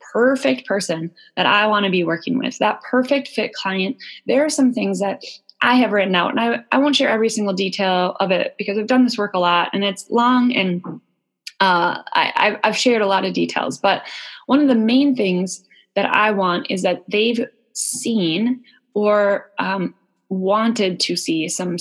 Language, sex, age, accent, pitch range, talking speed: English, female, 20-39, American, 180-240 Hz, 190 wpm